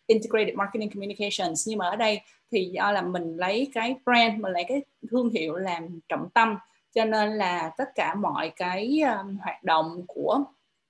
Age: 20-39